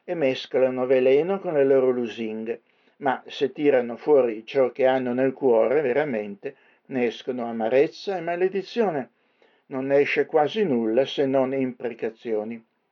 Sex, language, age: male, Italian, 60-79